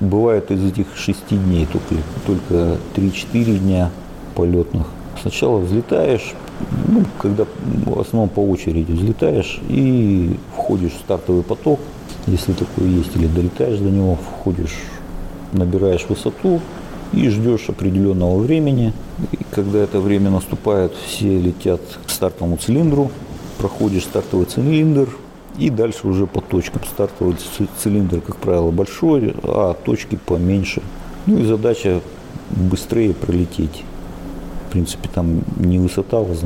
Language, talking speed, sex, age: Russian, 120 wpm, male, 50-69